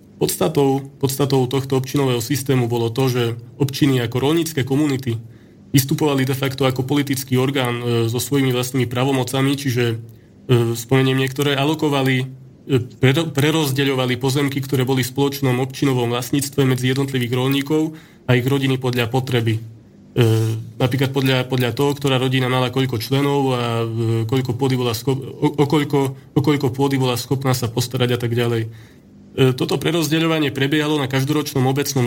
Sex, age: male, 20-39